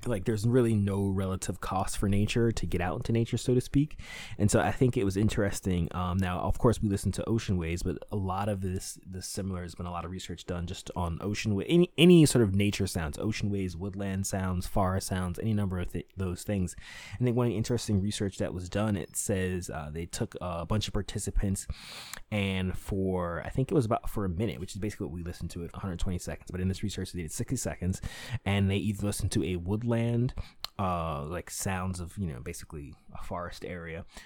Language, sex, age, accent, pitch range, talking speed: English, male, 20-39, American, 90-115 Hz, 230 wpm